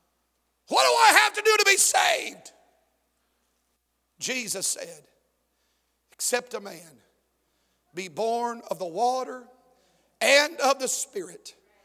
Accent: American